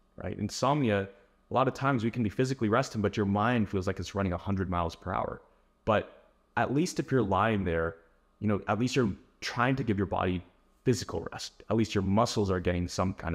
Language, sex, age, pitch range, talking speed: English, male, 30-49, 95-115 Hz, 220 wpm